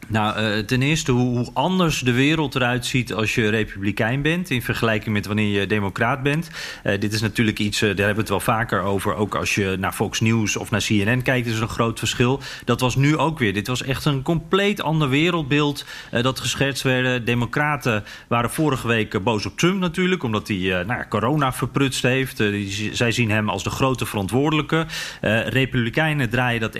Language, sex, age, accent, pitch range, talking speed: Dutch, male, 40-59, Dutch, 115-150 Hz, 200 wpm